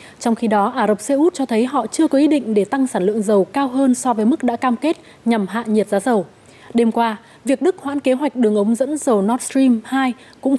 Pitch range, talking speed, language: 215-270 Hz, 265 wpm, Vietnamese